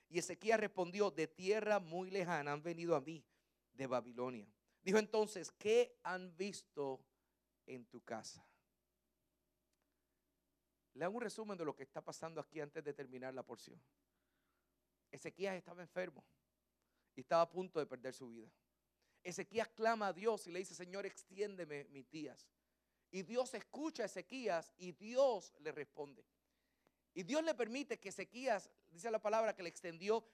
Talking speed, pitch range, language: 155 wpm, 145-205 Hz, English